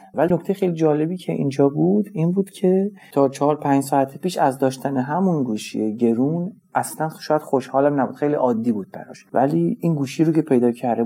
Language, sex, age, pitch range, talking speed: Persian, male, 40-59, 120-150 Hz, 190 wpm